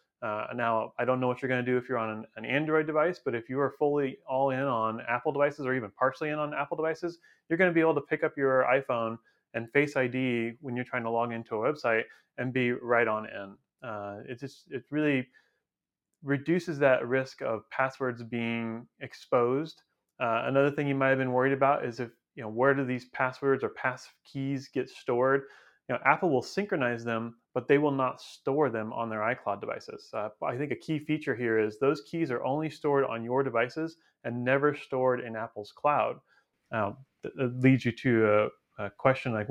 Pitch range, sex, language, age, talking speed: 120-145 Hz, male, English, 30-49, 210 wpm